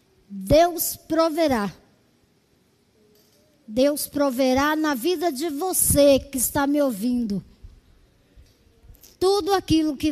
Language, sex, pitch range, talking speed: Portuguese, male, 250-340 Hz, 90 wpm